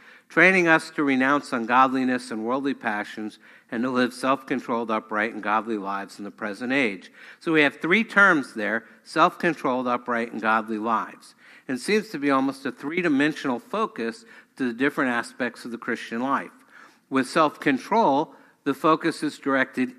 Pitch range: 115-155 Hz